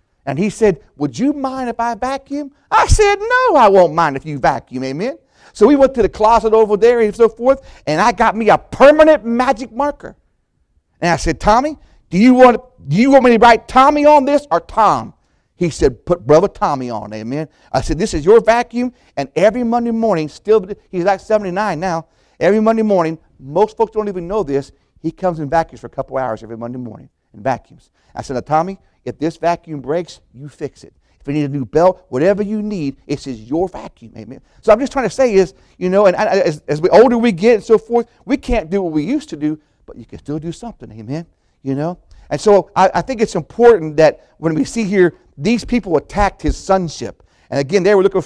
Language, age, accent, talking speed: English, 50-69, American, 230 wpm